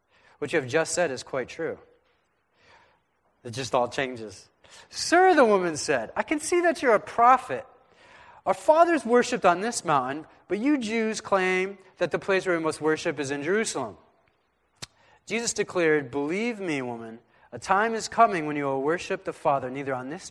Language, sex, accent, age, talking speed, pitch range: English, male, American, 30-49, 180 wpm, 135-195 Hz